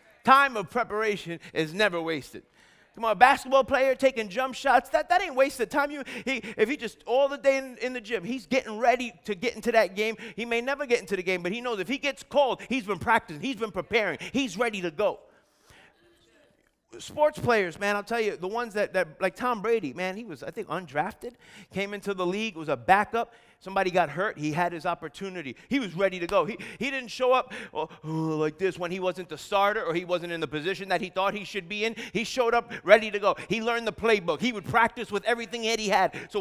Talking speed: 240 wpm